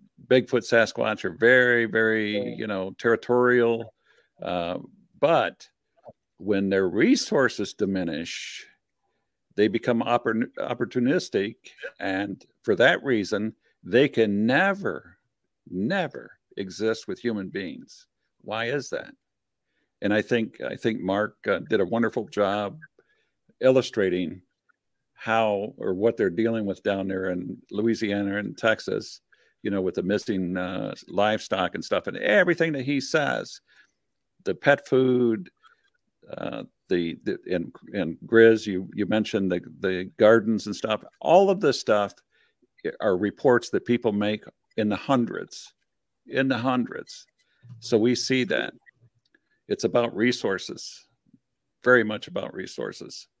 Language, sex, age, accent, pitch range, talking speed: English, male, 50-69, American, 100-125 Hz, 125 wpm